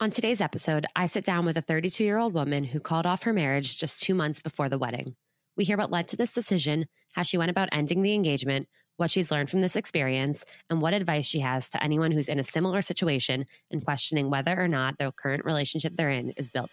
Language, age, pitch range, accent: English, 20-39, 140-175 Hz, American